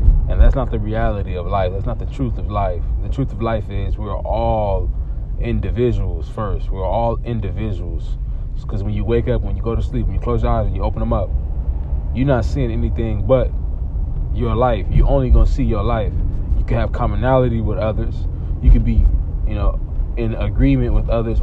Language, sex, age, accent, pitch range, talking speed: English, male, 20-39, American, 75-115 Hz, 200 wpm